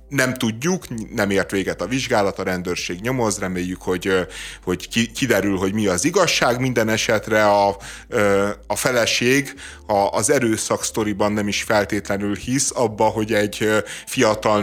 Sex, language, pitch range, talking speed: male, Hungarian, 95-115 Hz, 135 wpm